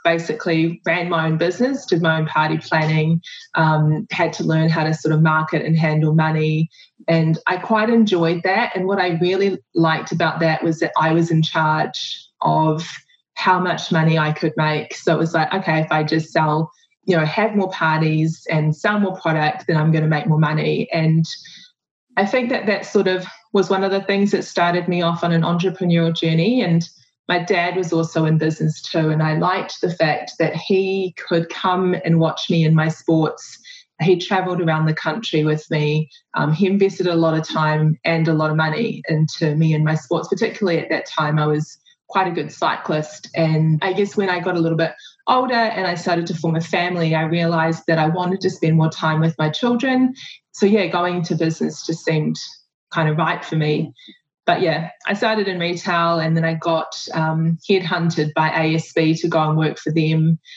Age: 20-39